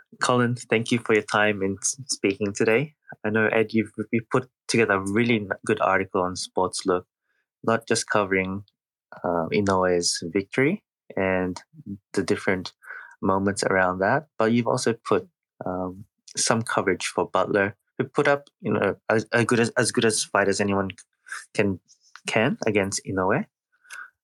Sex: male